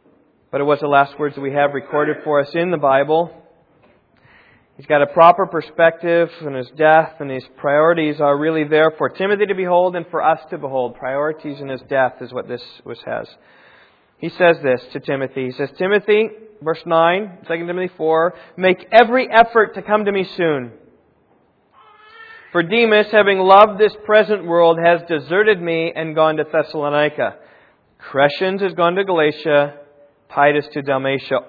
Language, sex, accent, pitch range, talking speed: English, male, American, 145-190 Hz, 170 wpm